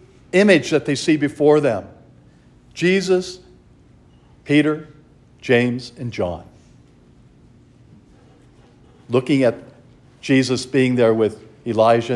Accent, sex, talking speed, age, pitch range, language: American, male, 90 wpm, 50-69, 120-150 Hz, English